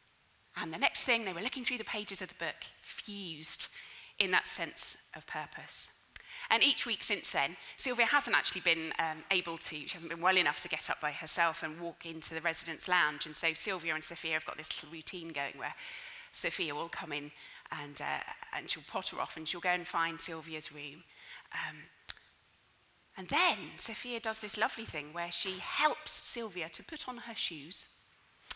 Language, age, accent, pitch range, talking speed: English, 30-49, British, 170-245 Hz, 195 wpm